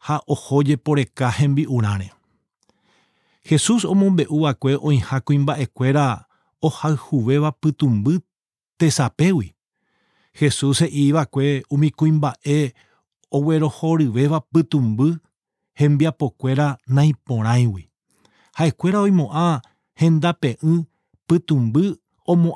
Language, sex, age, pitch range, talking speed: English, male, 40-59, 135-165 Hz, 90 wpm